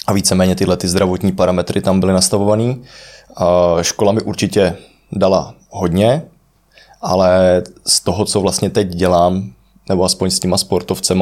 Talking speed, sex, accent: 145 wpm, male, native